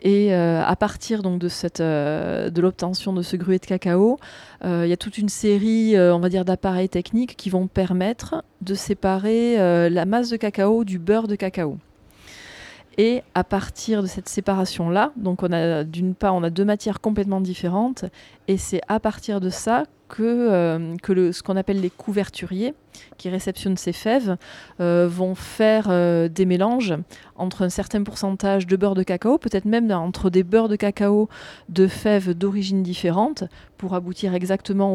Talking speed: 180 wpm